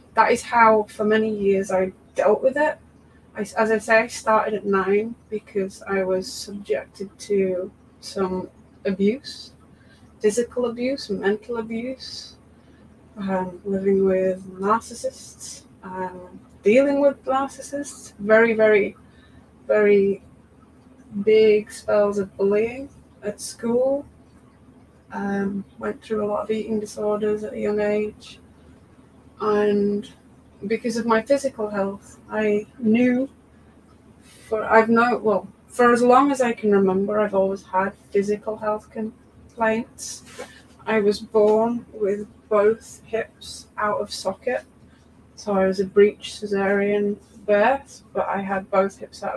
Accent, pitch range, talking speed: British, 195-225 Hz, 130 wpm